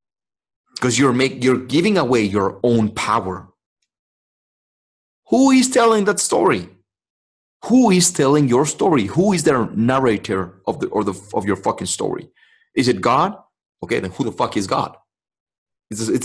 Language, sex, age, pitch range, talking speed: English, male, 30-49, 100-135 Hz, 165 wpm